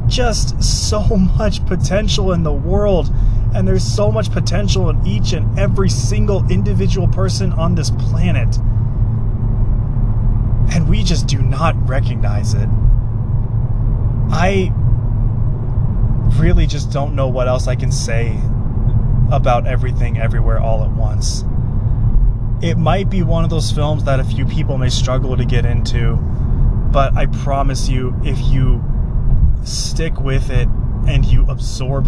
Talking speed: 135 wpm